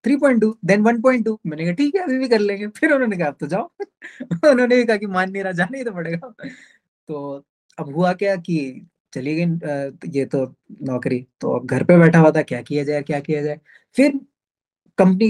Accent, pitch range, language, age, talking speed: native, 155-230 Hz, Hindi, 20-39, 195 wpm